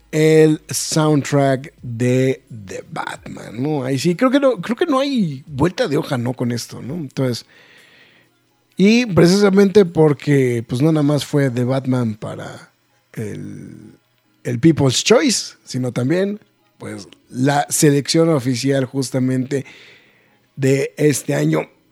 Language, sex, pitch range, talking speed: Spanish, male, 125-175 Hz, 130 wpm